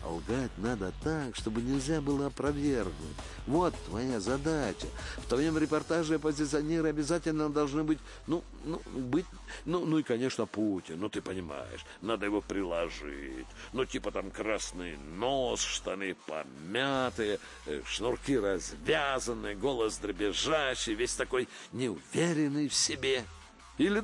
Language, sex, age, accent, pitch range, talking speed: Russian, male, 60-79, native, 100-150 Hz, 120 wpm